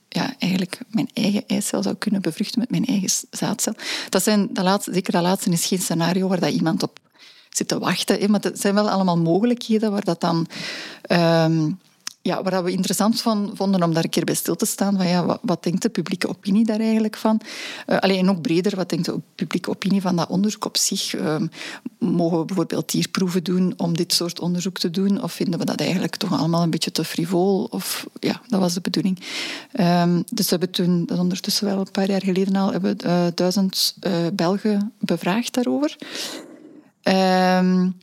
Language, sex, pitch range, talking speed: Dutch, female, 180-215 Hz, 205 wpm